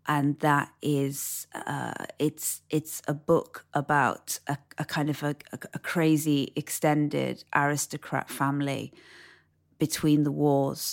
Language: English